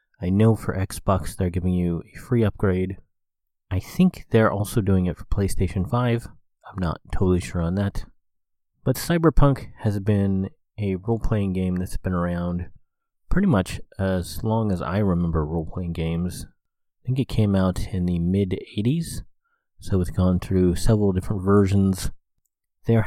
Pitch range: 90-110 Hz